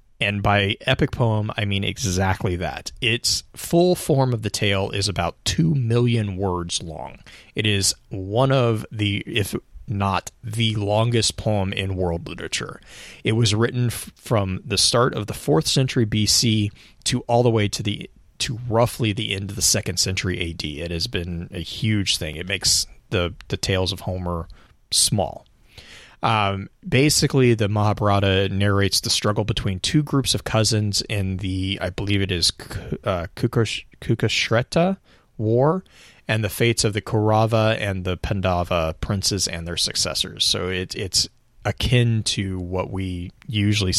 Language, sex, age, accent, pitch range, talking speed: English, male, 30-49, American, 95-115 Hz, 155 wpm